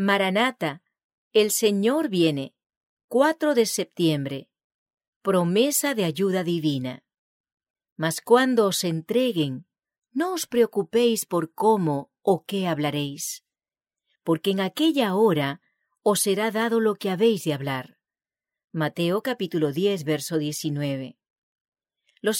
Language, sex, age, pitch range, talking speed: English, female, 40-59, 160-235 Hz, 110 wpm